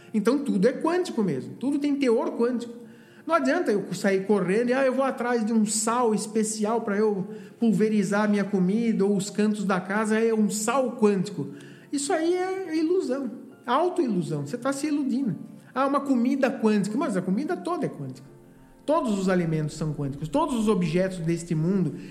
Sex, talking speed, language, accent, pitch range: male, 180 wpm, Portuguese, Brazilian, 155-235 Hz